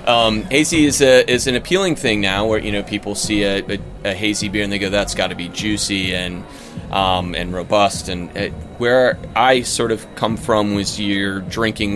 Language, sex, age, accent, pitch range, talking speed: English, male, 30-49, American, 95-110 Hz, 210 wpm